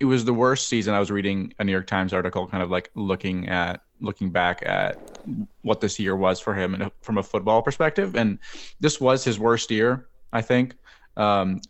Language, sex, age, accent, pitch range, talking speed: English, male, 20-39, American, 95-115 Hz, 210 wpm